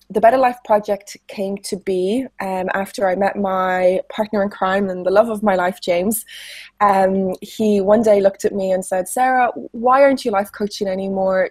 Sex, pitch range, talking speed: female, 195-220 Hz, 200 wpm